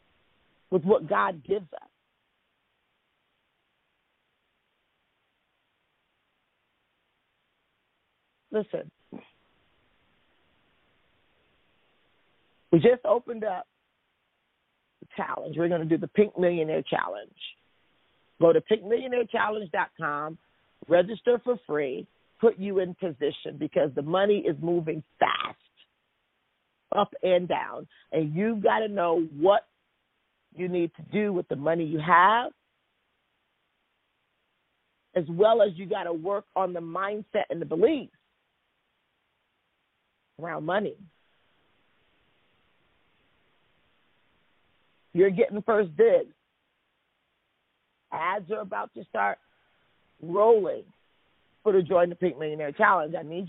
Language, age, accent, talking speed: English, 50-69, American, 100 wpm